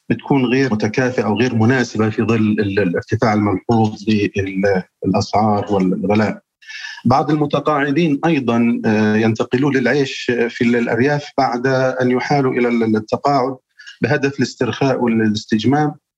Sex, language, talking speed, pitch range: male, Arabic, 100 wpm, 110-130 Hz